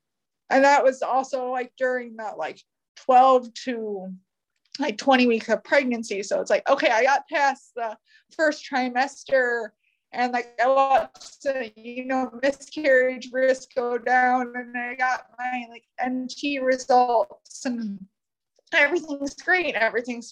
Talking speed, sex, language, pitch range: 140 wpm, female, English, 220-270 Hz